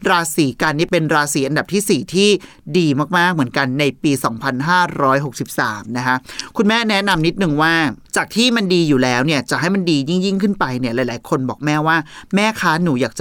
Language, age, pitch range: Thai, 30-49, 140-185 Hz